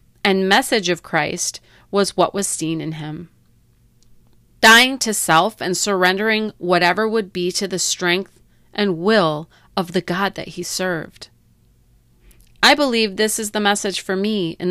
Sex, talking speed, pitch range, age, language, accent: female, 155 wpm, 165-205 Hz, 30-49, English, American